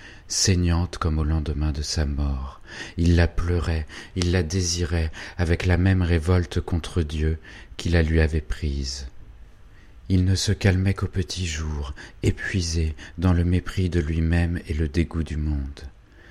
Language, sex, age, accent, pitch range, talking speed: French, male, 40-59, French, 80-95 Hz, 155 wpm